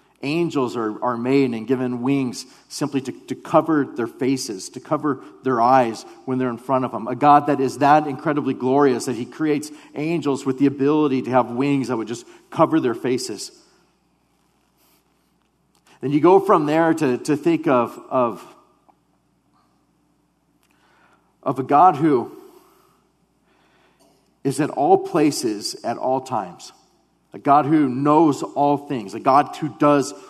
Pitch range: 130-160 Hz